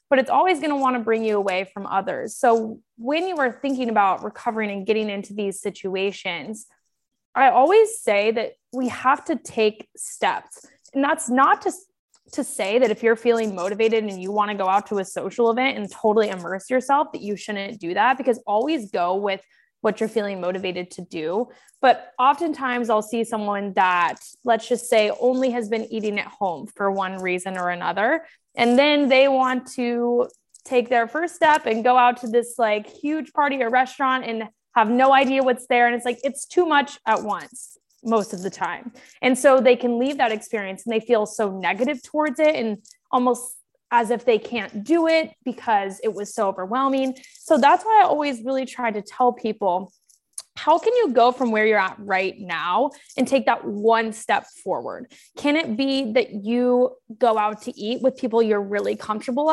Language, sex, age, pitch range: English, female, 20-39, 210-265 Hz